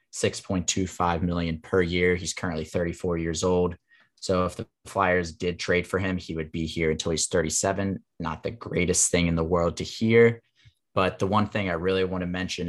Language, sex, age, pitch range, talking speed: English, male, 30-49, 85-100 Hz, 220 wpm